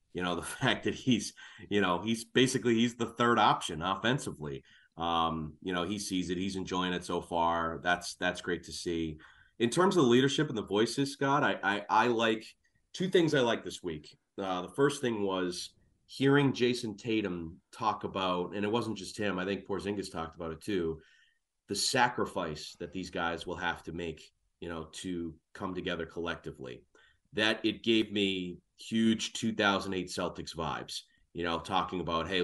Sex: male